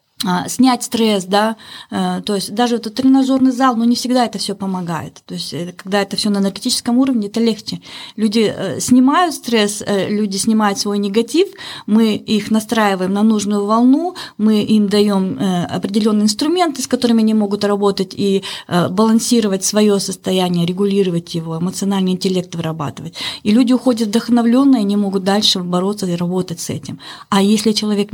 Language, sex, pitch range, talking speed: Russian, female, 190-250 Hz, 160 wpm